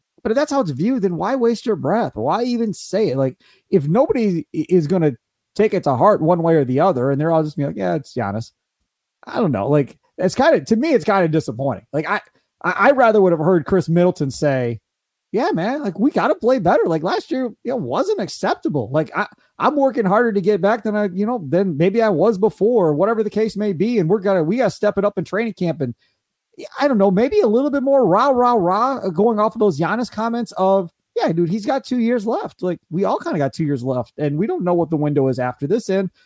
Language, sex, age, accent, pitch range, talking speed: English, male, 30-49, American, 150-225 Hz, 260 wpm